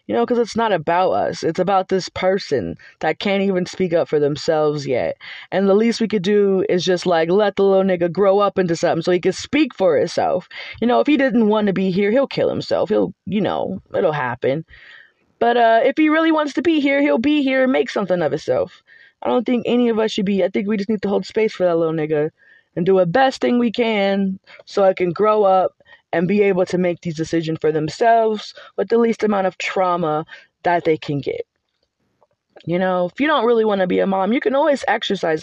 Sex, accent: female, American